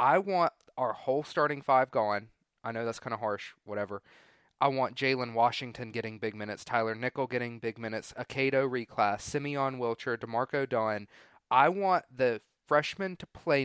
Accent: American